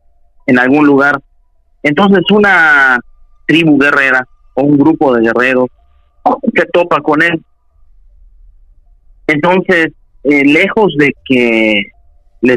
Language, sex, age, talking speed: Spanish, male, 40-59, 105 wpm